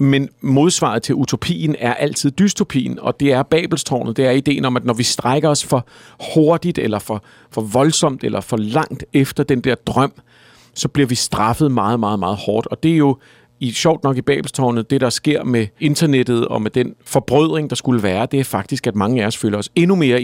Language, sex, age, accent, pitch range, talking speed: Danish, male, 50-69, native, 120-150 Hz, 215 wpm